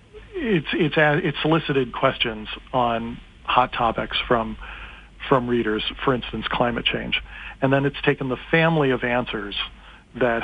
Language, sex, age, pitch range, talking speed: English, male, 40-59, 115-130 Hz, 140 wpm